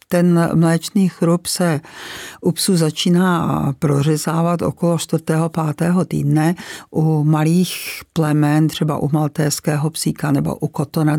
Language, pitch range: Czech, 150-165 Hz